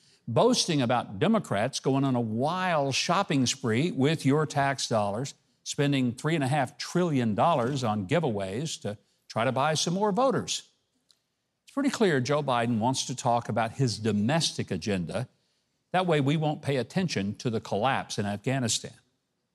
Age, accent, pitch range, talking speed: 50-69, American, 120-175 Hz, 145 wpm